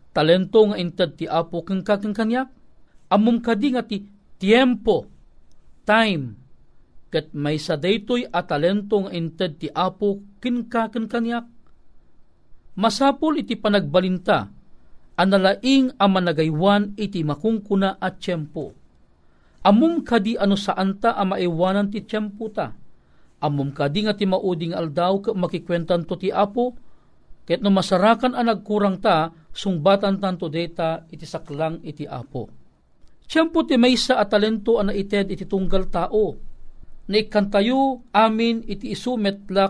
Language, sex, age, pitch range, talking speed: Filipino, male, 40-59, 170-225 Hz, 120 wpm